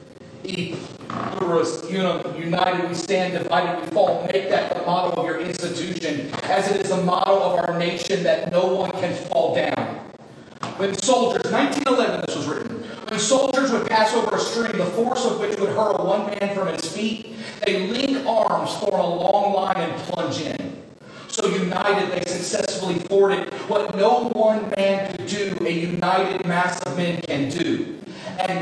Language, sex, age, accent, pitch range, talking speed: English, male, 30-49, American, 180-235 Hz, 170 wpm